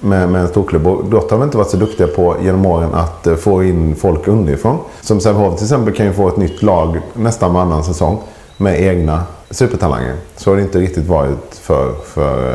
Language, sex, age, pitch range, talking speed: English, male, 30-49, 85-100 Hz, 210 wpm